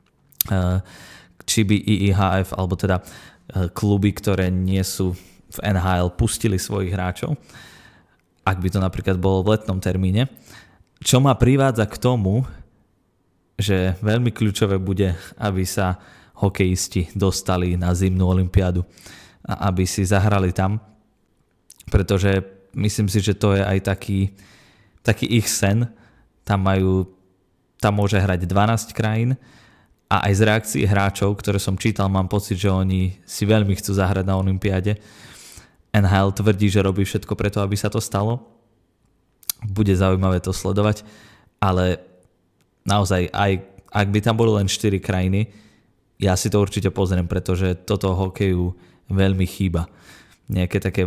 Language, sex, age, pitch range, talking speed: Slovak, male, 20-39, 95-105 Hz, 135 wpm